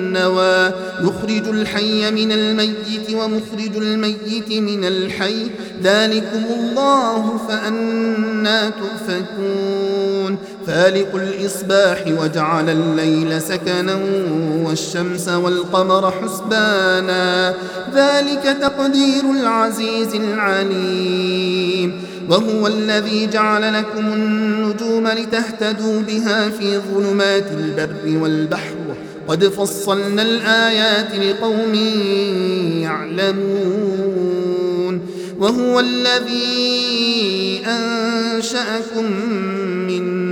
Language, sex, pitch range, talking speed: Arabic, male, 185-225 Hz, 65 wpm